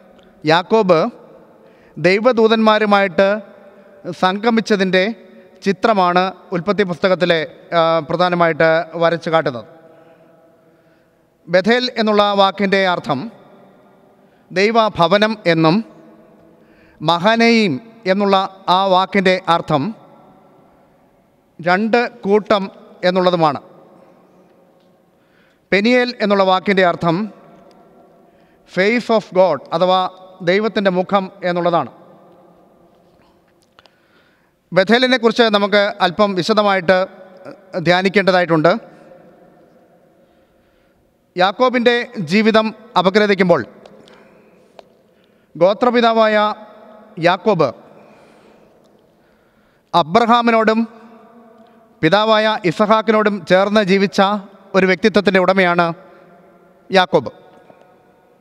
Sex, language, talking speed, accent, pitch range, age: male, Malayalam, 55 wpm, native, 175-215 Hz, 30-49